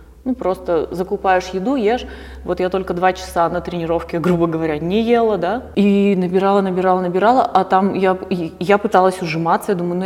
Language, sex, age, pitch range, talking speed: Russian, female, 20-39, 170-200 Hz, 180 wpm